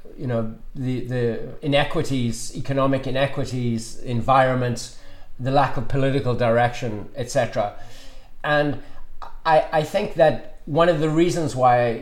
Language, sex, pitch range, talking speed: English, male, 120-150 Hz, 120 wpm